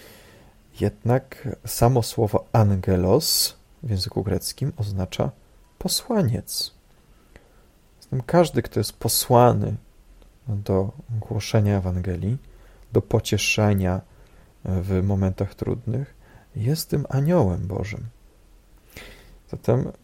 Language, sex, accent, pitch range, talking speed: Polish, male, native, 95-120 Hz, 80 wpm